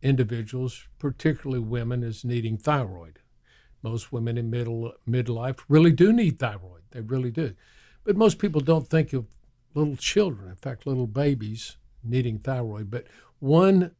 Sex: male